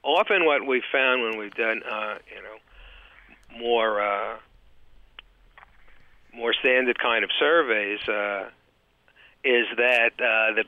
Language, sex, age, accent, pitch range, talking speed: English, male, 60-79, American, 105-140 Hz, 125 wpm